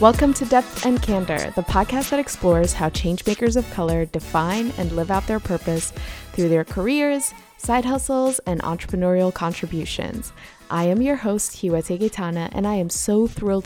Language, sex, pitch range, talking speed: English, female, 165-215 Hz, 165 wpm